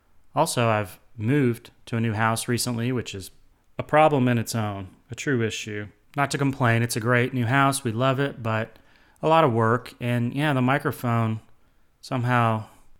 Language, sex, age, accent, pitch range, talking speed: English, male, 30-49, American, 110-135 Hz, 180 wpm